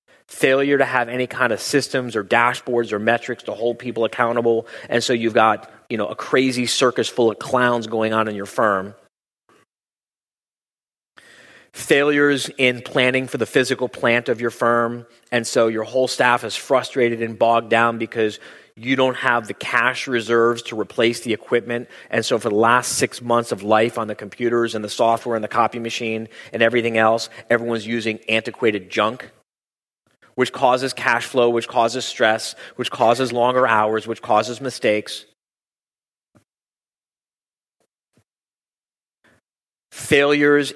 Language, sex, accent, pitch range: English, male, American, 115-125 Hz